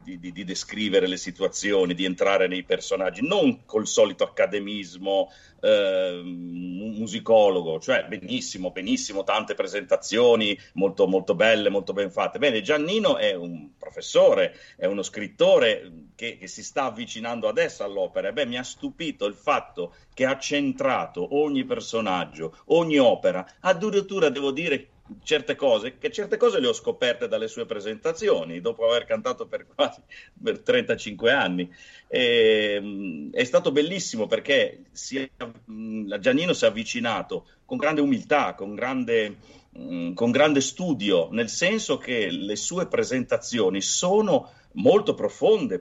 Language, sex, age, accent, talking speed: Italian, male, 50-69, native, 130 wpm